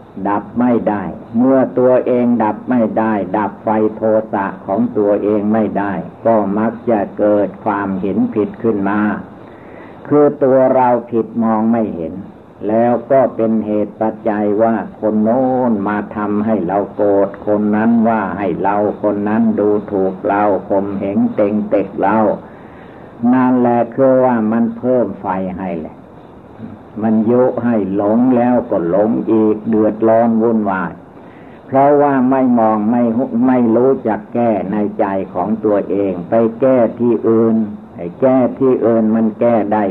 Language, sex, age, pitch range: Thai, male, 60-79, 100-115 Hz